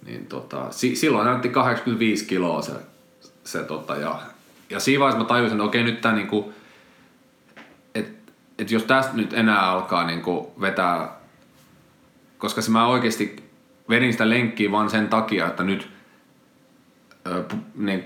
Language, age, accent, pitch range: Finnish, 30-49, native, 85-115 Hz